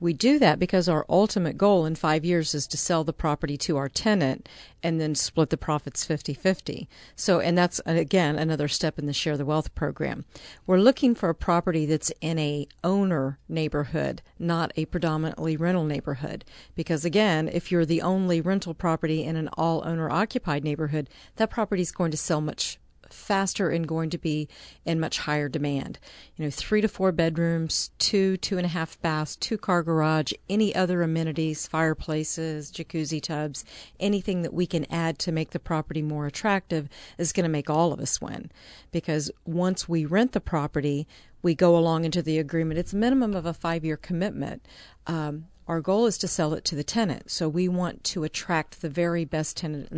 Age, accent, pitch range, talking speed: 50-69, American, 155-180 Hz, 190 wpm